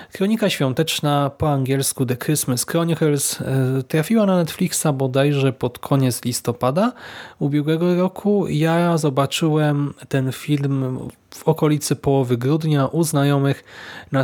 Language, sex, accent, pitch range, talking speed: Polish, male, native, 130-165 Hz, 115 wpm